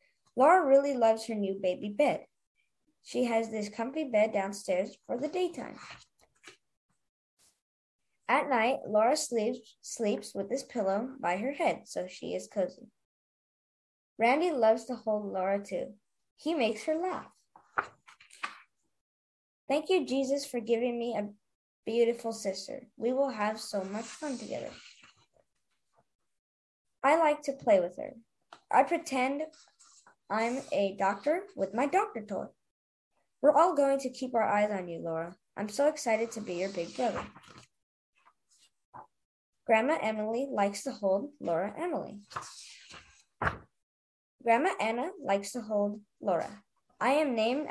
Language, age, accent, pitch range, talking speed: English, 20-39, American, 205-275 Hz, 130 wpm